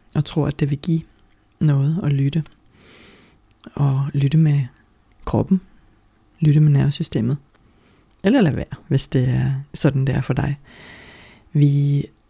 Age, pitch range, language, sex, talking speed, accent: 30-49, 115-150 Hz, Danish, female, 140 wpm, native